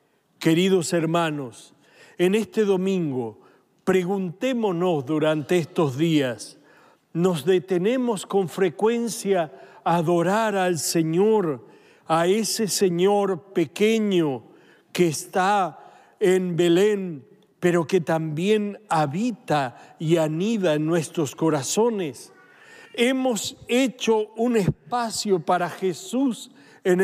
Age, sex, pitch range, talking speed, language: 60-79, male, 165-210 Hz, 90 wpm, Spanish